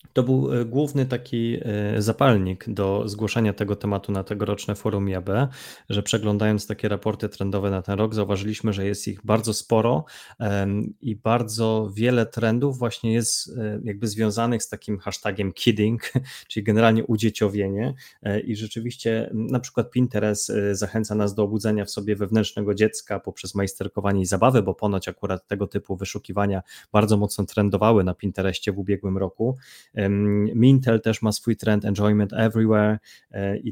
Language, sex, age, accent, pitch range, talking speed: Polish, male, 20-39, native, 100-115 Hz, 145 wpm